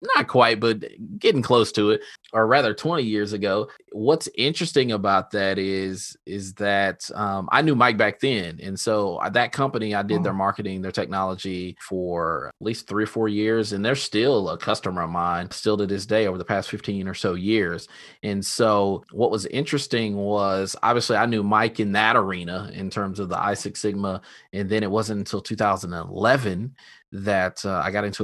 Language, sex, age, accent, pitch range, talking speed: English, male, 20-39, American, 95-130 Hz, 190 wpm